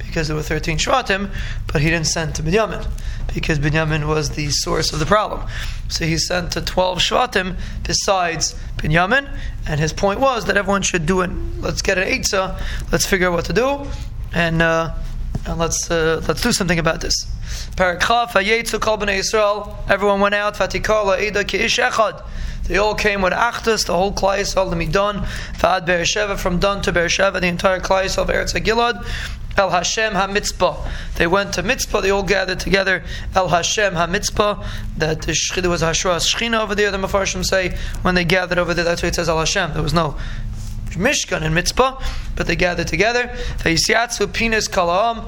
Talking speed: 165 wpm